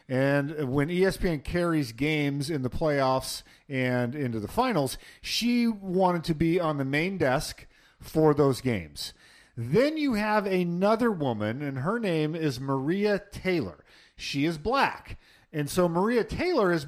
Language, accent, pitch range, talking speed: English, American, 135-180 Hz, 150 wpm